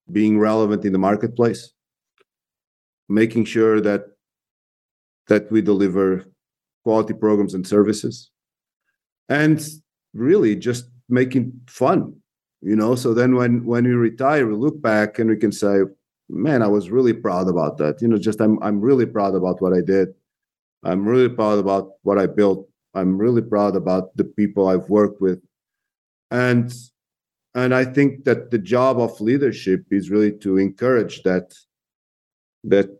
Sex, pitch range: male, 95-115 Hz